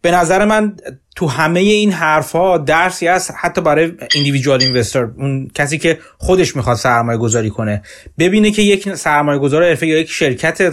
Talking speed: 170 wpm